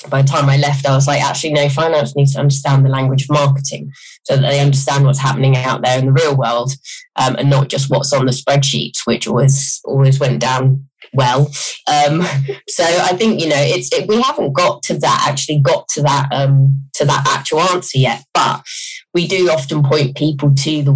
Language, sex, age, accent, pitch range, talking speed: English, female, 20-39, British, 135-150 Hz, 215 wpm